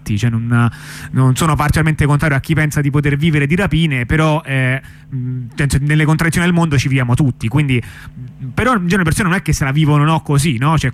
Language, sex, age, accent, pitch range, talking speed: Italian, male, 30-49, native, 125-155 Hz, 205 wpm